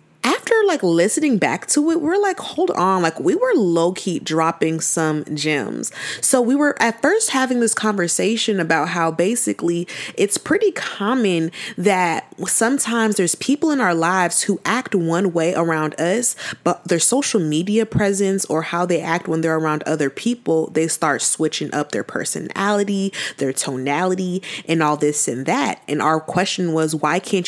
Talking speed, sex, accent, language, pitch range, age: 170 wpm, female, American, English, 165-230 Hz, 20-39